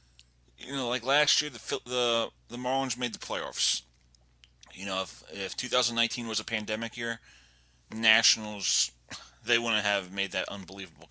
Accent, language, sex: American, English, male